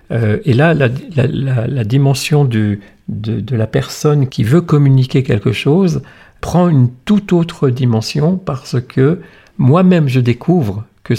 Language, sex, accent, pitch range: French, male, French, 110-140 Hz